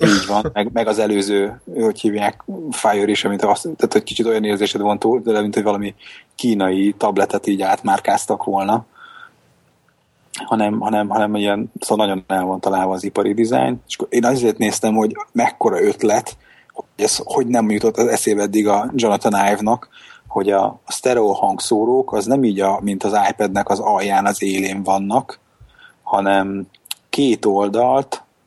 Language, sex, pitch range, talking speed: Hungarian, male, 100-115 Hz, 160 wpm